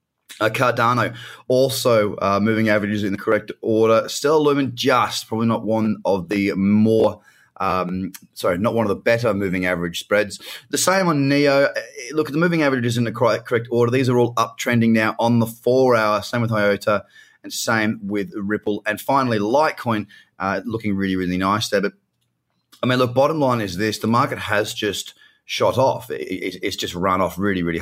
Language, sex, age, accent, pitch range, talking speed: English, male, 20-39, Australian, 90-120 Hz, 190 wpm